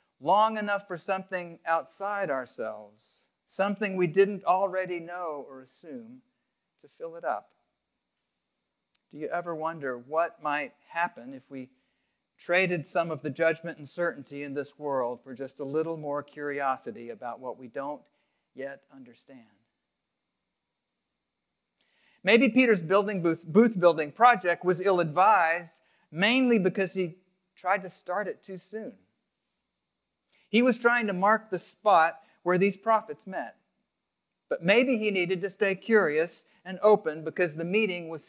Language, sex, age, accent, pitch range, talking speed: English, male, 50-69, American, 155-205 Hz, 140 wpm